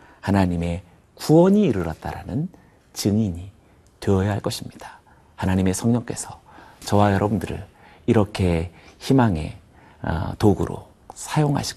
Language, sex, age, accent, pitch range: Korean, male, 40-59, native, 90-120 Hz